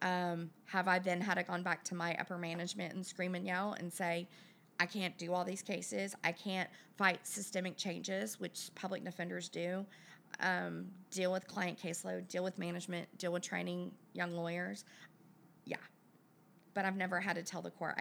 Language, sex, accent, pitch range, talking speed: English, female, American, 175-195 Hz, 185 wpm